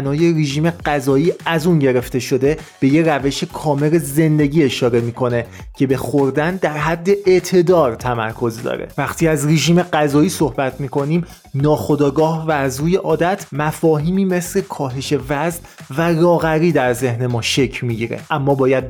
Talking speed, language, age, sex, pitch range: 145 wpm, Persian, 30-49, male, 140-175 Hz